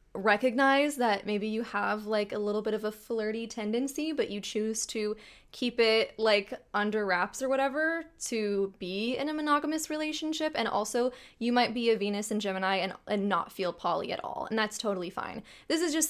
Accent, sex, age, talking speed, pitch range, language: American, female, 20-39, 200 wpm, 195-235 Hz, English